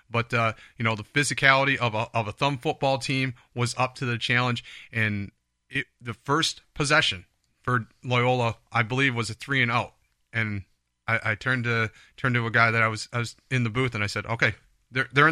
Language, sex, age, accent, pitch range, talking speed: English, male, 40-59, American, 115-135 Hz, 215 wpm